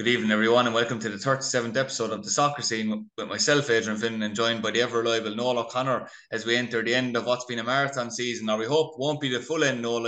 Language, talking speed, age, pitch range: English, 255 wpm, 20-39, 110-130 Hz